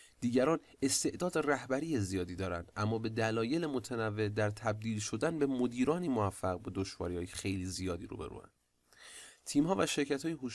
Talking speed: 140 wpm